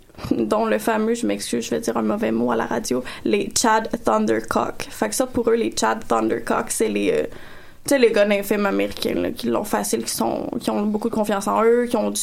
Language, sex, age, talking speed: French, female, 20-39, 230 wpm